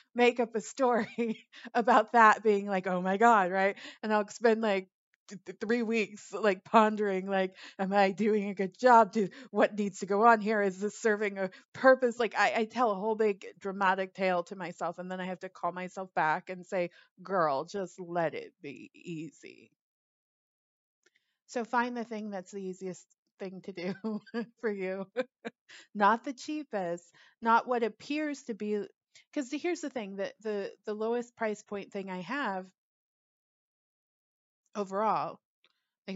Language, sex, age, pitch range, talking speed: English, female, 30-49, 190-230 Hz, 170 wpm